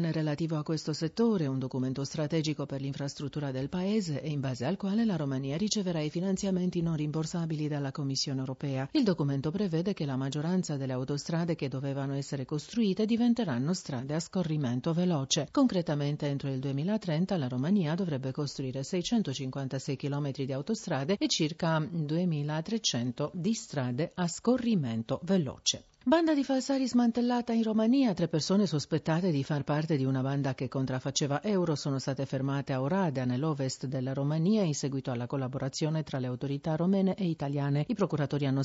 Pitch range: 135-180 Hz